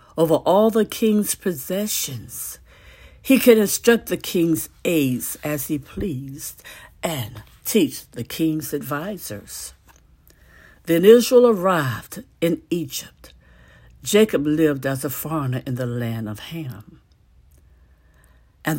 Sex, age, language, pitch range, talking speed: female, 60-79, English, 130-215 Hz, 110 wpm